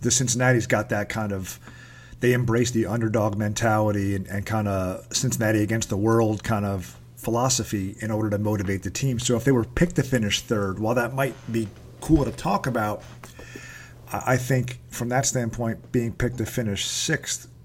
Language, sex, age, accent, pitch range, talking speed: English, male, 40-59, American, 105-125 Hz, 185 wpm